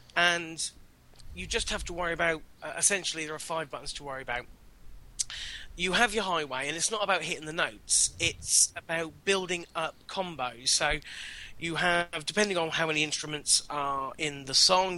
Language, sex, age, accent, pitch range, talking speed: English, male, 30-49, British, 145-170 Hz, 175 wpm